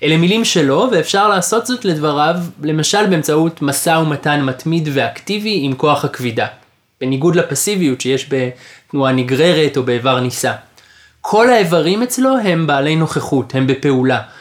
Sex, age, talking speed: male, 20-39, 135 wpm